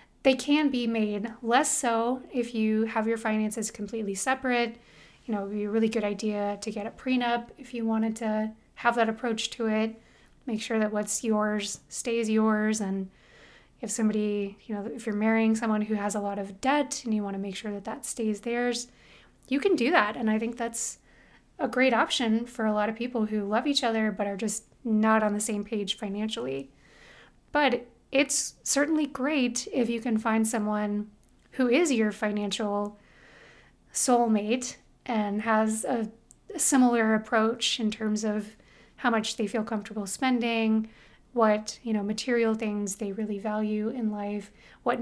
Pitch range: 210-235 Hz